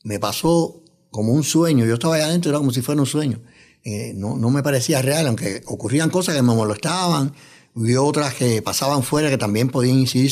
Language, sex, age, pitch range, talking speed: English, male, 60-79, 115-150 Hz, 210 wpm